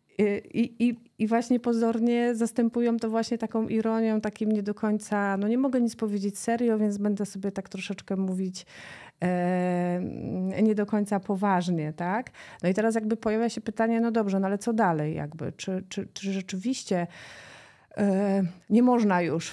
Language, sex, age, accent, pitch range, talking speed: Polish, female, 30-49, native, 190-225 Hz, 155 wpm